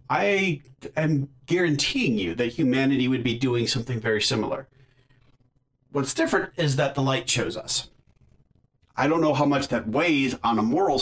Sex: male